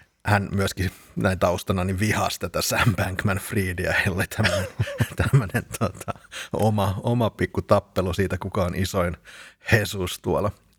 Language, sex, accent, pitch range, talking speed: Finnish, male, native, 95-115 Hz, 120 wpm